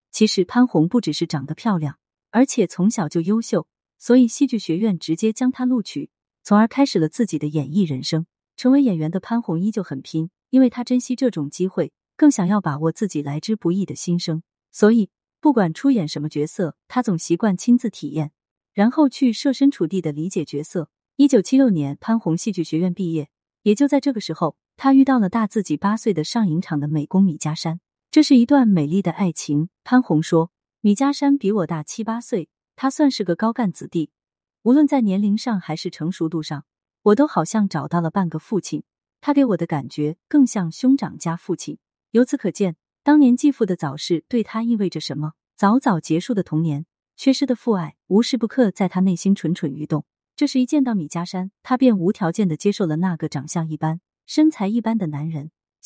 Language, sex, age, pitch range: Chinese, female, 30-49, 160-235 Hz